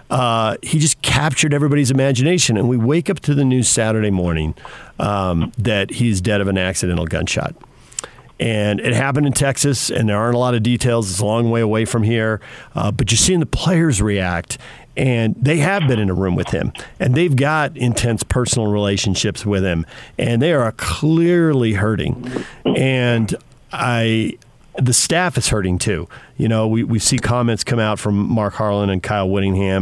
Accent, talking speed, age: American, 185 wpm, 50-69